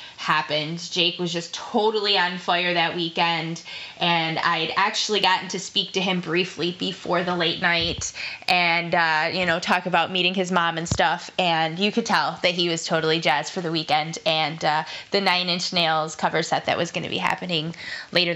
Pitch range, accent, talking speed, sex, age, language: 170-195 Hz, American, 195 wpm, female, 10-29, English